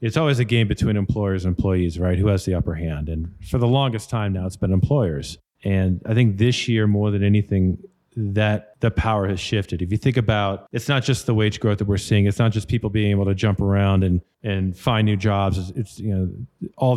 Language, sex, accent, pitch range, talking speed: English, male, American, 100-115 Hz, 240 wpm